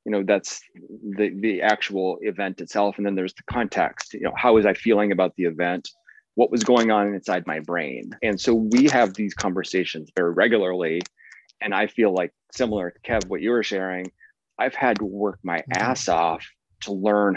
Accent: American